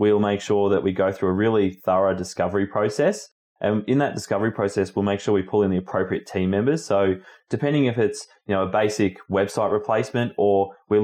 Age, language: 20-39, English